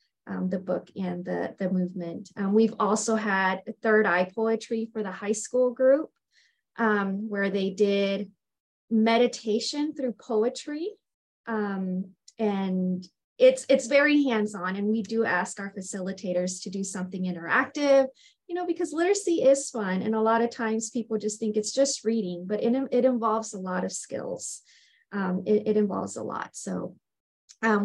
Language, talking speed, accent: English, 160 wpm, American